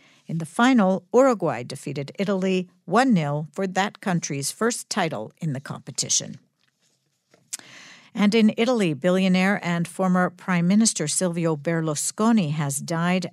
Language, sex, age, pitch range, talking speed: English, female, 60-79, 155-210 Hz, 120 wpm